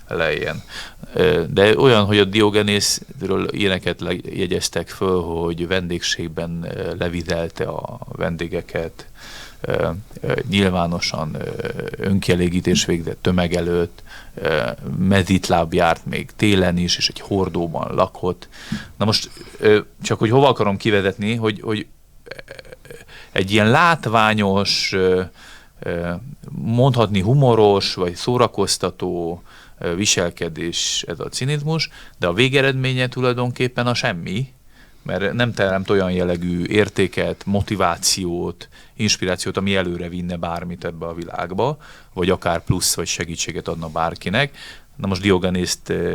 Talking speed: 105 wpm